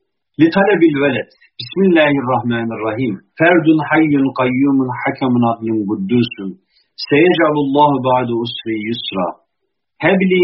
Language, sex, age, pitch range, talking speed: Turkish, male, 50-69, 120-160 Hz, 90 wpm